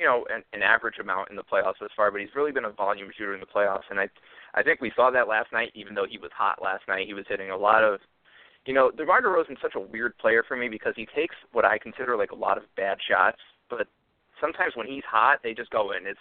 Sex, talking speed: male, 280 wpm